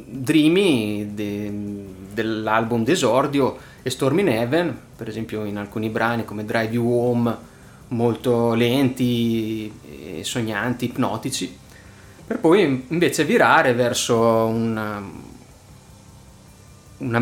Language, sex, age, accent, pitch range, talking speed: Italian, male, 30-49, native, 110-130 Hz, 100 wpm